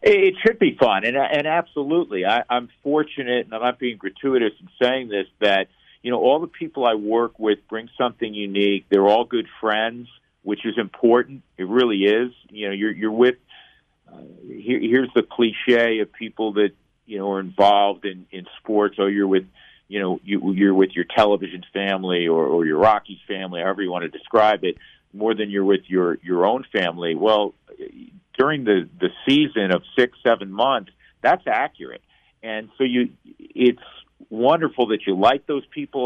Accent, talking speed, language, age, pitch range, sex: American, 185 wpm, English, 50-69, 95-125 Hz, male